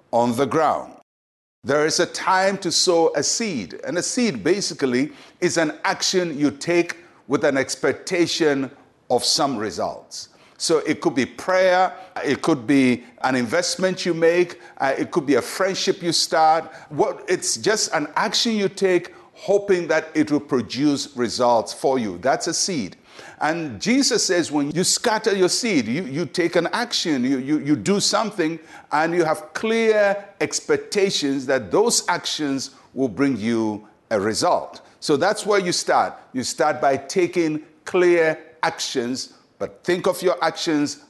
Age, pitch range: 60-79, 140-185 Hz